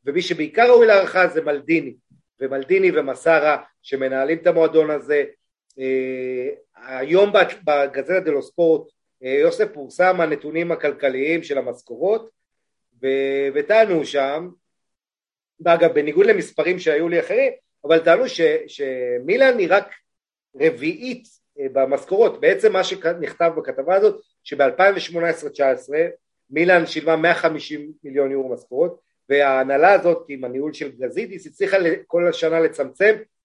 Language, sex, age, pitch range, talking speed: Hebrew, male, 40-59, 150-220 Hz, 110 wpm